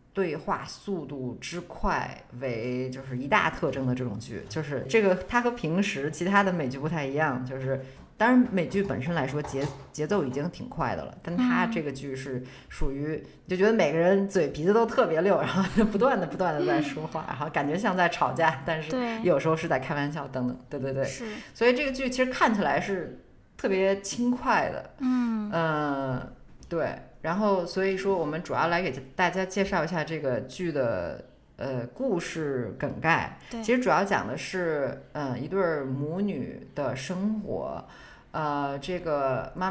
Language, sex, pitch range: Chinese, female, 140-195 Hz